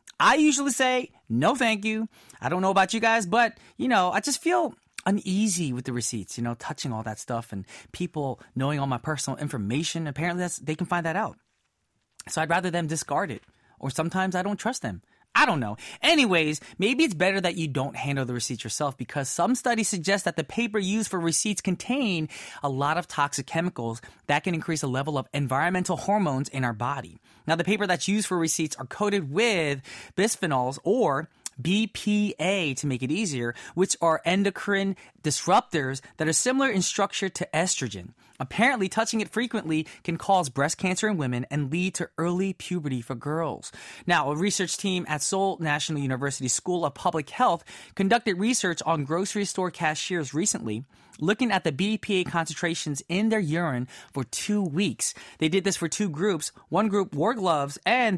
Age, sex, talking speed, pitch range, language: 20-39, male, 185 wpm, 140-200 Hz, English